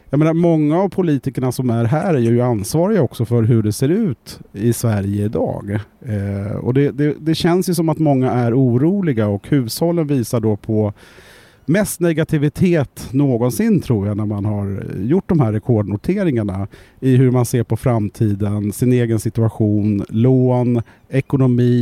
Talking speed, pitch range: 160 wpm, 110-150 Hz